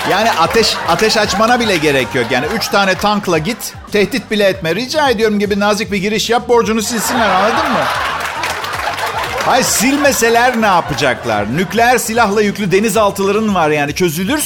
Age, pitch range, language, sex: 50-69, 160-230 Hz, Turkish, male